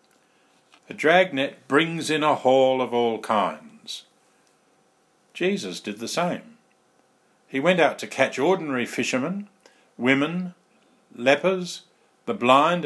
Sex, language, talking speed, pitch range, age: male, English, 110 wpm, 110-175 Hz, 50-69